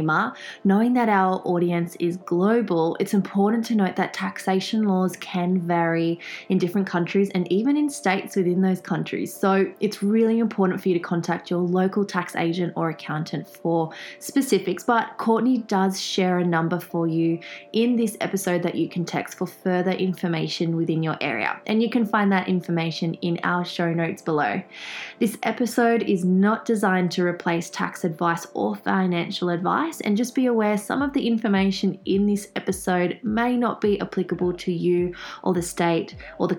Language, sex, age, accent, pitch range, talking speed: English, female, 20-39, Australian, 175-210 Hz, 175 wpm